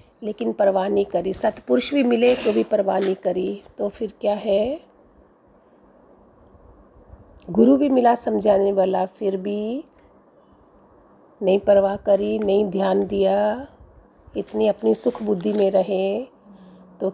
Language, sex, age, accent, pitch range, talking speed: Hindi, female, 50-69, native, 190-225 Hz, 125 wpm